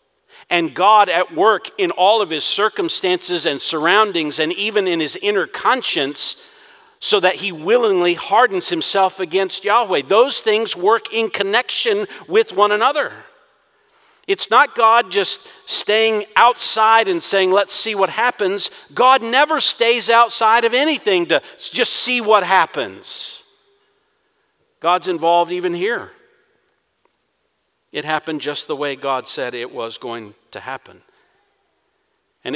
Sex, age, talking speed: male, 50-69, 135 wpm